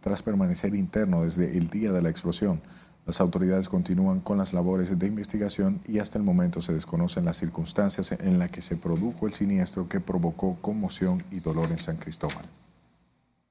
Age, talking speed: 40-59, 180 wpm